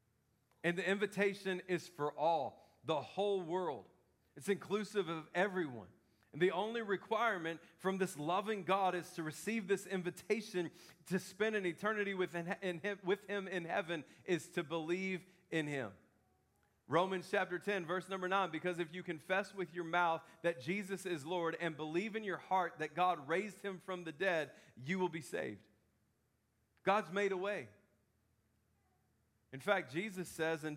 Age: 40-59